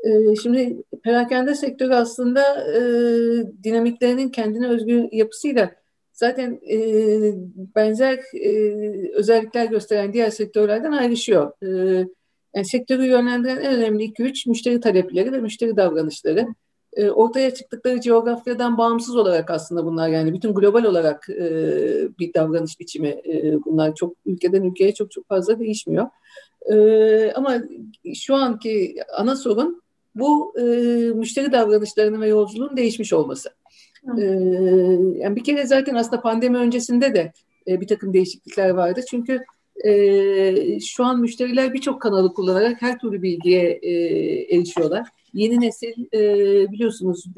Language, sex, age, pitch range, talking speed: Turkish, female, 50-69, 190-250 Hz, 125 wpm